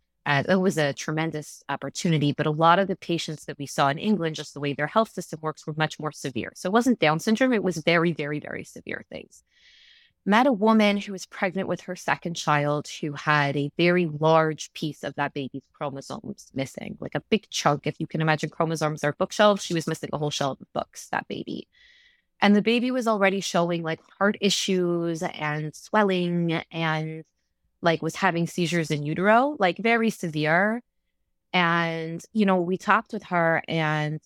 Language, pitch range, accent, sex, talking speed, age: English, 150-190 Hz, American, female, 195 wpm, 20-39